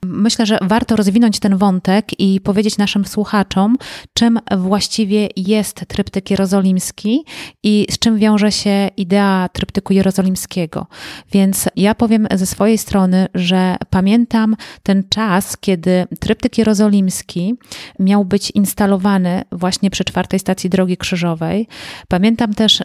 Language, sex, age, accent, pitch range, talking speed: Polish, female, 30-49, native, 190-215 Hz, 125 wpm